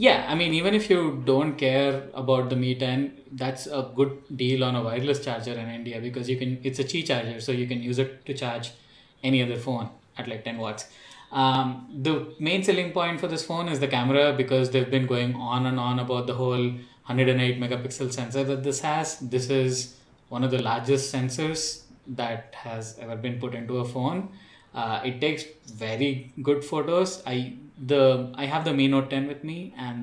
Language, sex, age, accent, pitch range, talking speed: English, male, 20-39, Indian, 125-140 Hz, 205 wpm